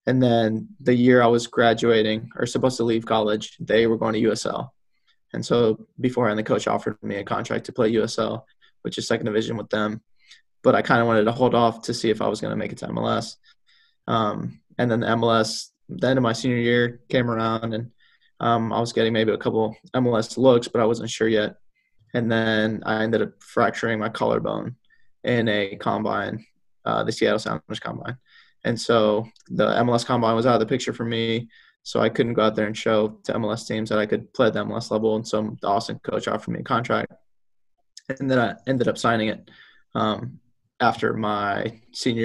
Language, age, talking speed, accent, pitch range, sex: English, 20-39, 210 wpm, American, 110-120 Hz, male